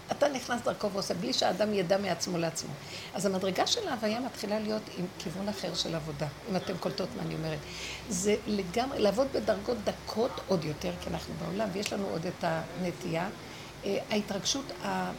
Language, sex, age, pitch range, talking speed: Hebrew, female, 60-79, 200-280 Hz, 165 wpm